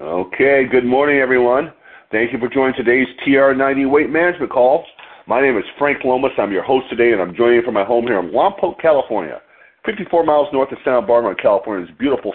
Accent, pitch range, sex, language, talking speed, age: American, 115-150 Hz, male, English, 200 wpm, 40-59